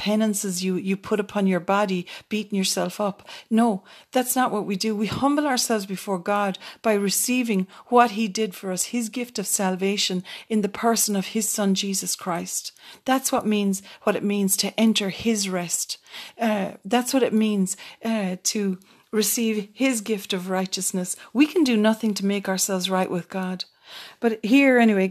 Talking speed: 180 wpm